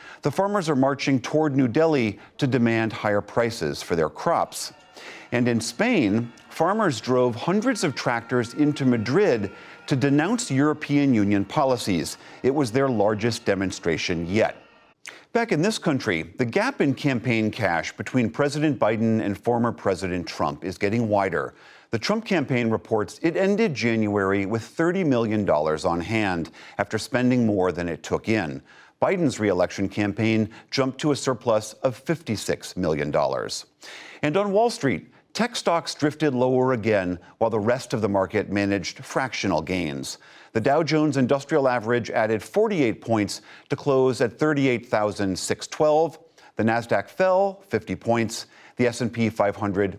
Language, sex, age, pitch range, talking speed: English, male, 50-69, 105-150 Hz, 145 wpm